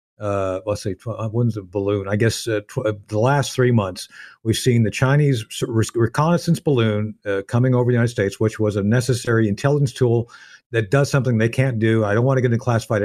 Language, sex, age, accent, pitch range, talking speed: English, male, 50-69, American, 110-135 Hz, 210 wpm